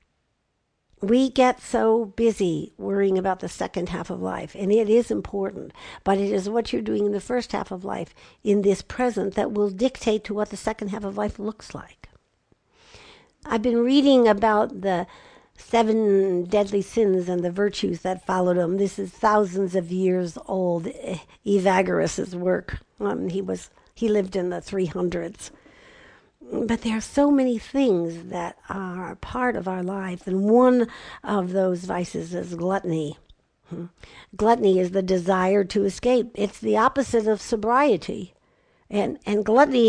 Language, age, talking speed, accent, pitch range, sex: English, 60-79, 160 wpm, American, 185-225 Hz, female